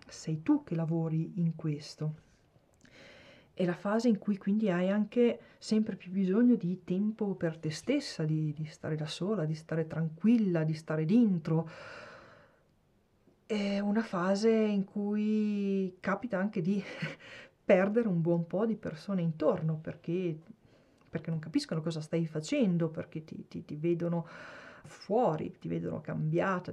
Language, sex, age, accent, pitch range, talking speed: Italian, female, 40-59, native, 165-205 Hz, 145 wpm